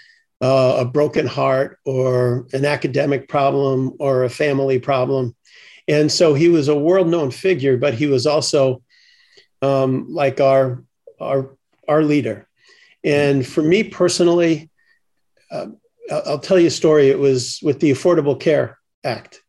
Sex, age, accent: male, 50-69, American